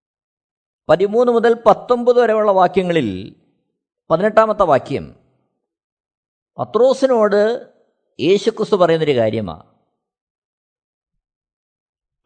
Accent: native